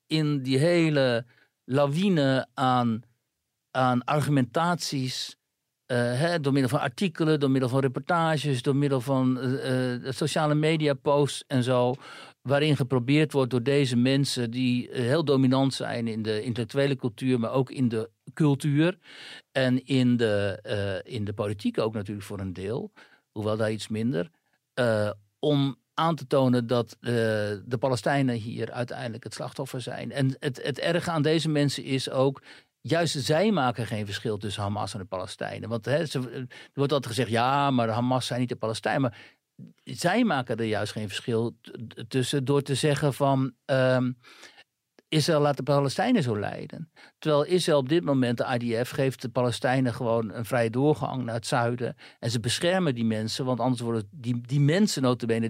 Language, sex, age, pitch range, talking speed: Dutch, male, 60-79, 120-145 Hz, 165 wpm